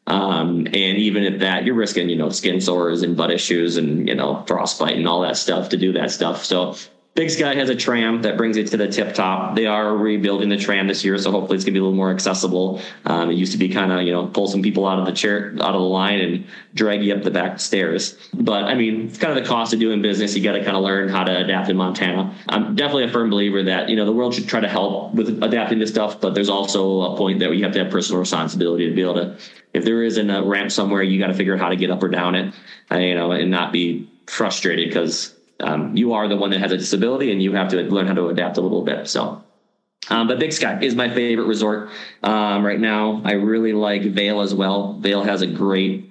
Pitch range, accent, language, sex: 95-105 Hz, American, English, male